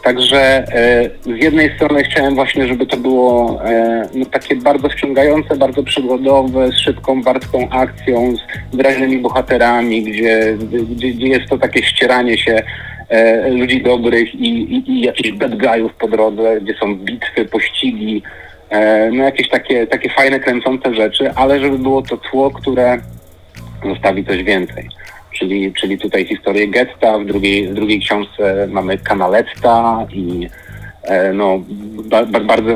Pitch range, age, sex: 105-130 Hz, 30-49, male